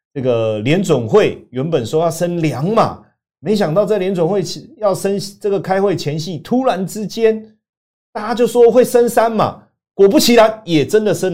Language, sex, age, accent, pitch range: Chinese, male, 30-49, native, 115-170 Hz